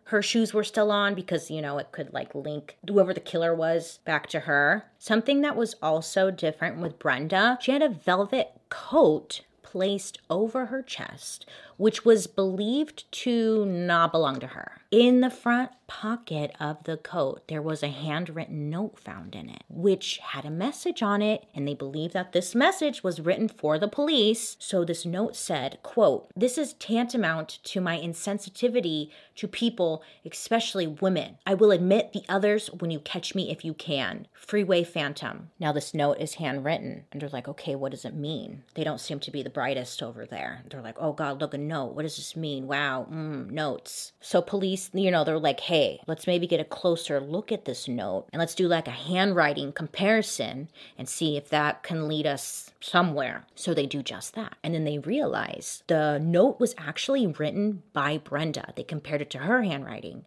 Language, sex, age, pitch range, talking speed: English, female, 30-49, 150-210 Hz, 190 wpm